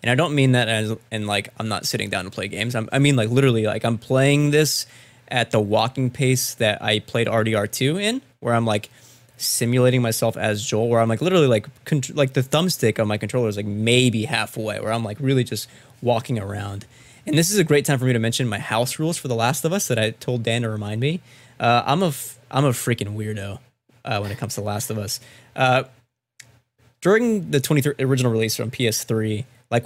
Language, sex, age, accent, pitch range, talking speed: English, male, 20-39, American, 110-135 Hz, 230 wpm